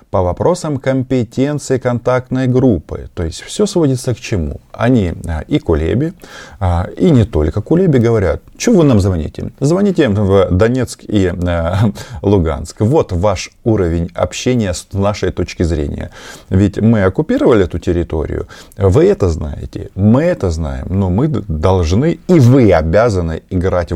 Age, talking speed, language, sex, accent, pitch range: 20-39, 140 wpm, Russian, male, native, 85-115 Hz